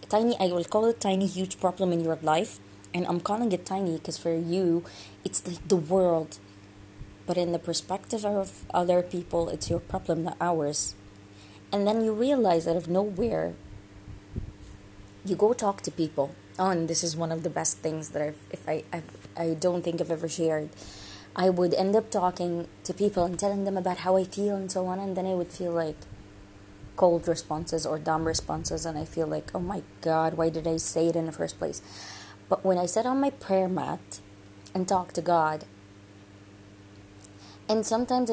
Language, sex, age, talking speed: English, female, 20-39, 200 wpm